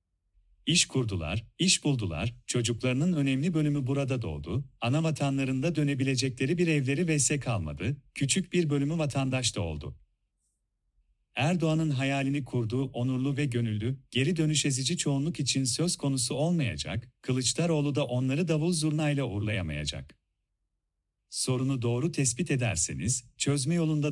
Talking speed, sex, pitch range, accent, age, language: 120 wpm, male, 115-150 Hz, native, 40-59, Turkish